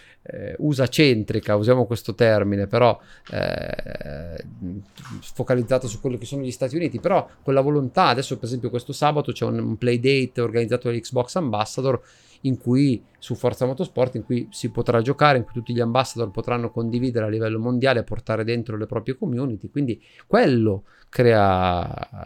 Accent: native